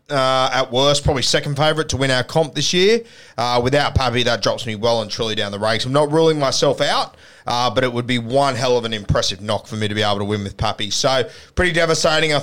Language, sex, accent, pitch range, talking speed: English, male, Australian, 125-150 Hz, 255 wpm